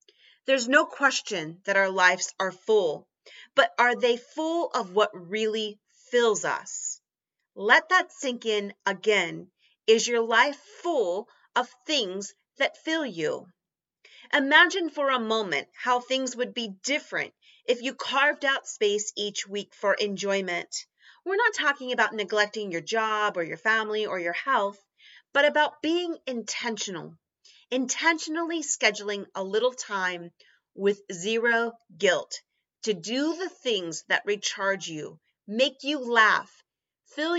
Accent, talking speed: American, 135 wpm